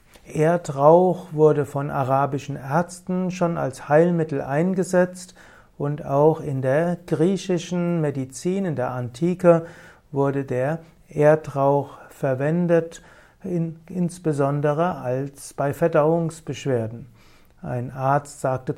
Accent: German